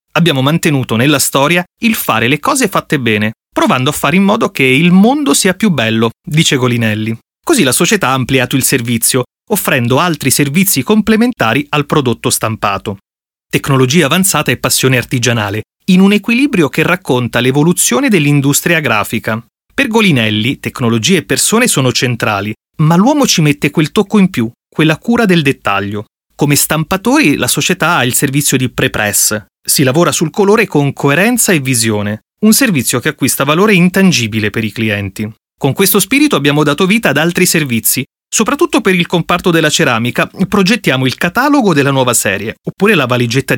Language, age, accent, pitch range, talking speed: Italian, 30-49, native, 125-185 Hz, 165 wpm